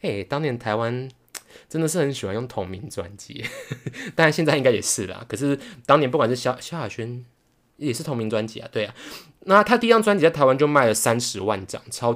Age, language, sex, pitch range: 20-39, Chinese, male, 115-165 Hz